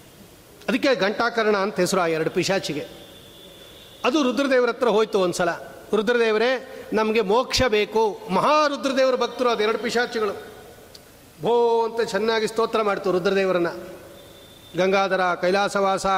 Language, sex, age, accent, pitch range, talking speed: Kannada, male, 40-59, native, 175-220 Hz, 115 wpm